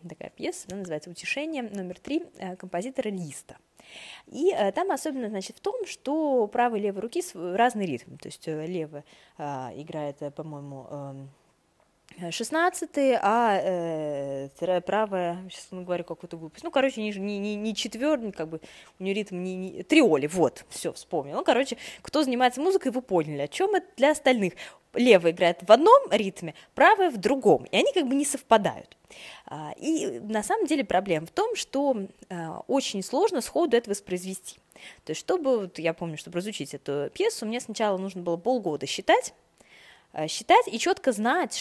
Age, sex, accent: 20-39, female, native